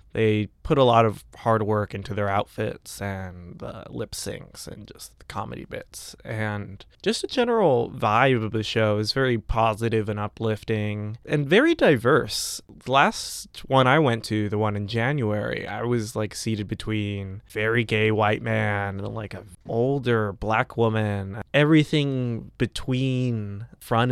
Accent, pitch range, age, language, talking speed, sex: American, 105-130 Hz, 20-39, English, 160 wpm, male